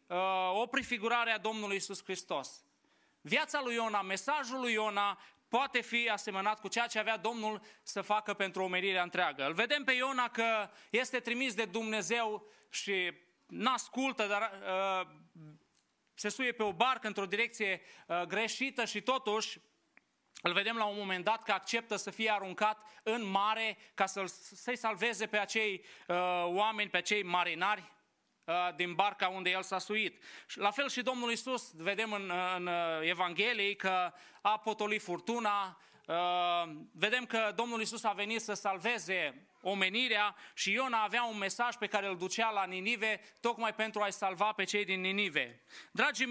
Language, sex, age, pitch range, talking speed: English, male, 30-49, 195-230 Hz, 155 wpm